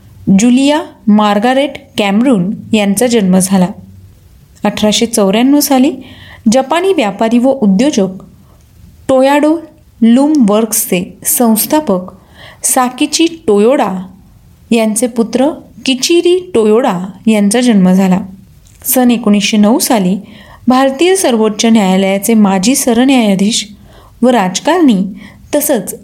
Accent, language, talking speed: native, Marathi, 85 wpm